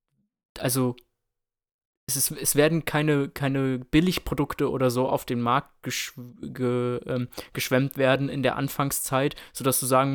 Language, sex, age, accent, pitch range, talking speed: German, male, 20-39, German, 125-150 Hz, 140 wpm